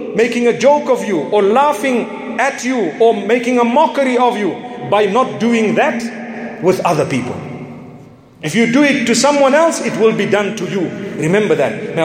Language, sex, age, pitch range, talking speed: English, male, 40-59, 190-230 Hz, 190 wpm